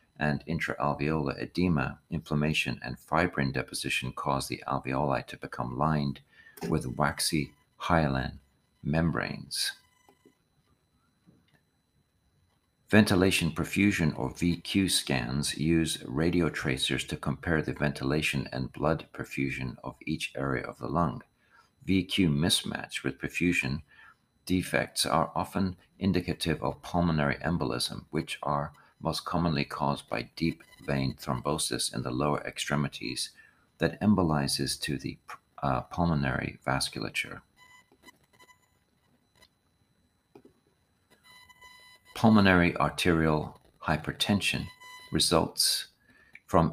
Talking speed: 95 wpm